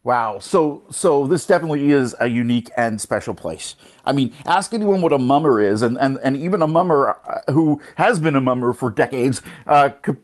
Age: 50-69